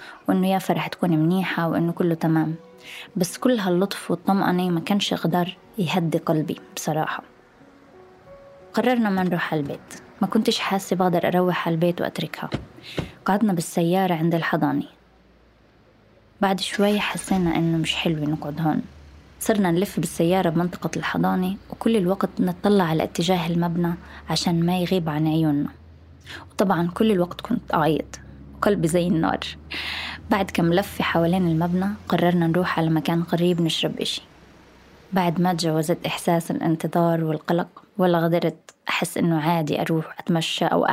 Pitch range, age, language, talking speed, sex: 160-185 Hz, 20-39, Arabic, 135 wpm, female